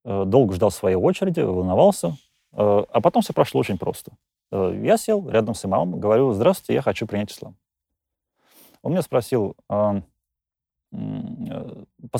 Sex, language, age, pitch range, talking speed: male, Russian, 30-49, 100-155 Hz, 130 wpm